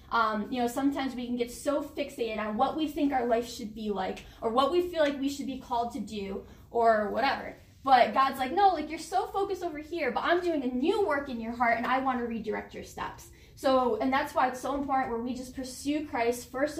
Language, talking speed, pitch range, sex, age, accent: English, 250 wpm, 235-295 Hz, female, 10-29, American